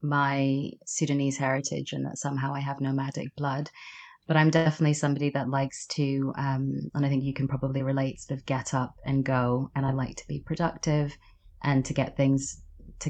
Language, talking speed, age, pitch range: English, 190 wpm, 30-49, 135-145 Hz